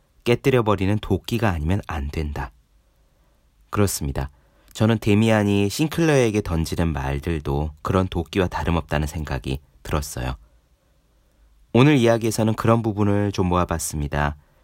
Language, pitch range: Korean, 75-110 Hz